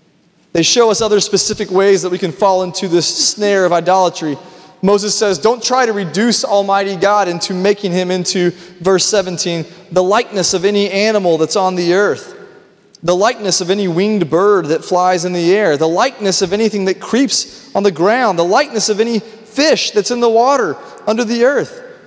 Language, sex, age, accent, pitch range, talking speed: English, male, 30-49, American, 185-225 Hz, 190 wpm